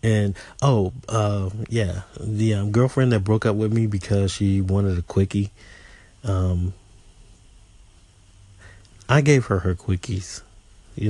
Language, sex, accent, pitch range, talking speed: English, male, American, 90-110 Hz, 130 wpm